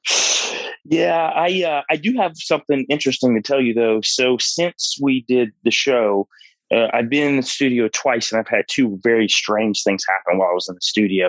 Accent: American